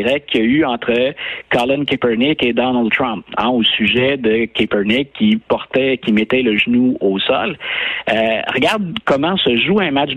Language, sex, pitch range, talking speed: French, male, 110-150 Hz, 175 wpm